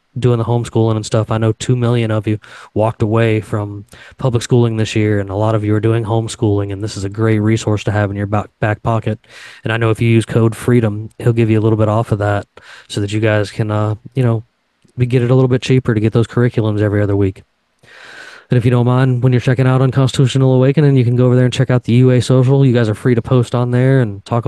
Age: 20-39